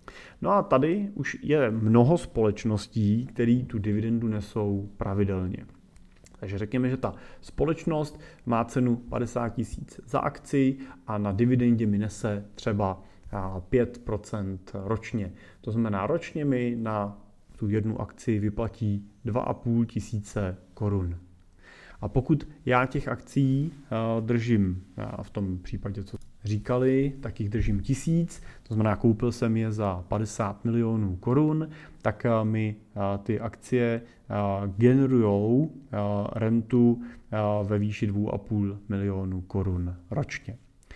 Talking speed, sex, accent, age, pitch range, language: 115 wpm, male, native, 30-49, 105-125 Hz, Czech